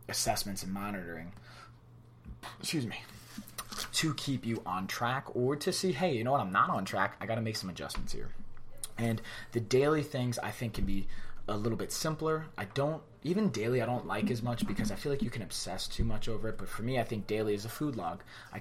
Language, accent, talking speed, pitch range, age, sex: English, American, 230 wpm, 100-120 Hz, 20-39, male